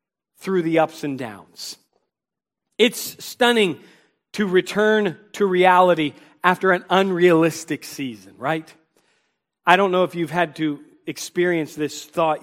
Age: 40-59